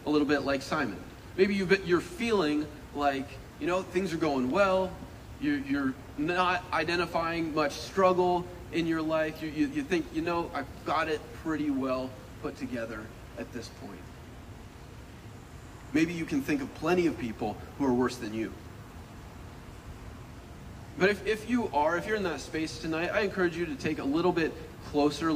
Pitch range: 130-185 Hz